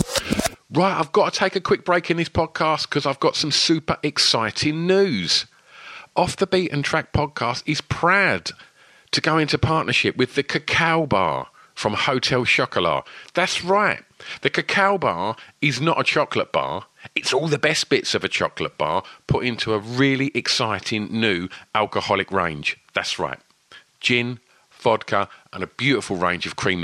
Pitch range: 110-160 Hz